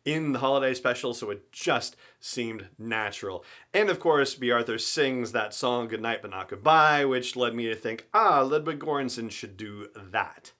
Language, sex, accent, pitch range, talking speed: English, male, American, 115-140 Hz, 180 wpm